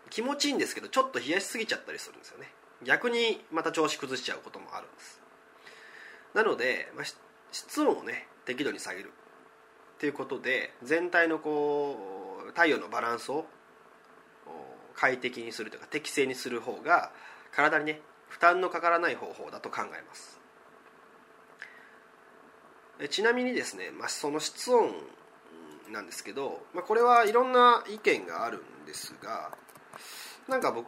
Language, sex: Japanese, male